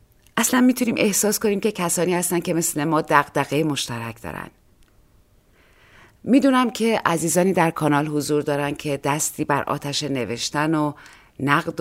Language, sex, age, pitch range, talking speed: Persian, female, 30-49, 140-175 Hz, 135 wpm